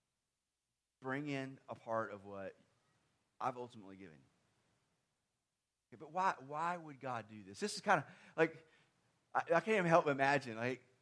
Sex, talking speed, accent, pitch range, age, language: male, 165 wpm, American, 125-170 Hz, 30-49, English